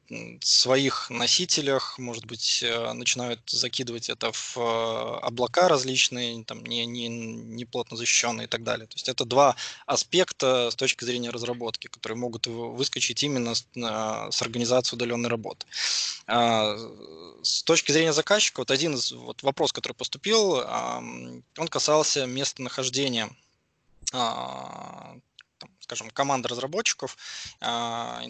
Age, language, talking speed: 20-39, English, 115 wpm